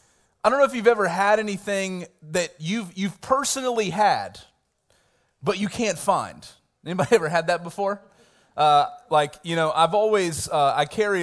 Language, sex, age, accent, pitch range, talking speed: English, male, 30-49, American, 160-225 Hz, 165 wpm